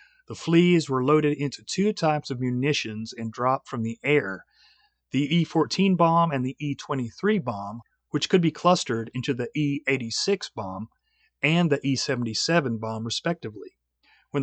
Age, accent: 40-59, American